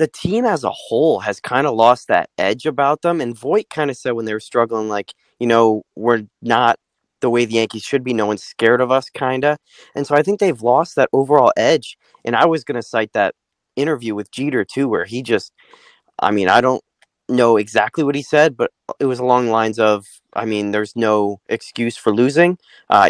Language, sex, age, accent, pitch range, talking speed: English, male, 20-39, American, 110-155 Hz, 225 wpm